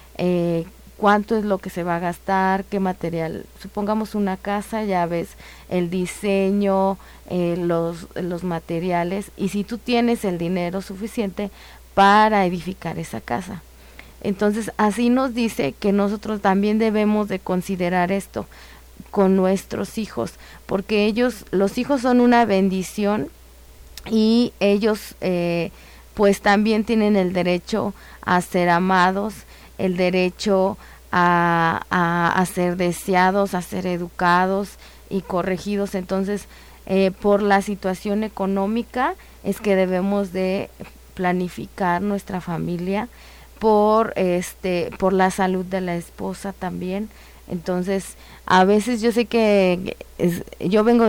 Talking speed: 125 wpm